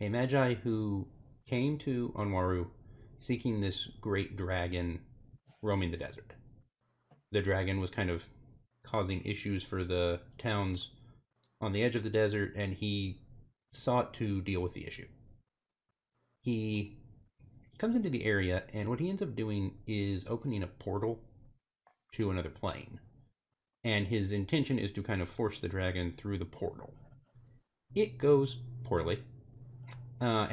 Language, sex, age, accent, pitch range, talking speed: English, male, 30-49, American, 95-125 Hz, 140 wpm